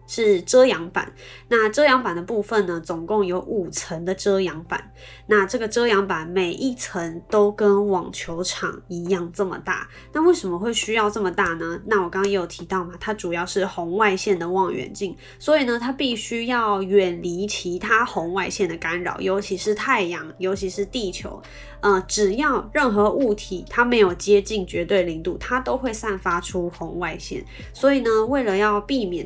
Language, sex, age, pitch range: Chinese, female, 20-39, 180-220 Hz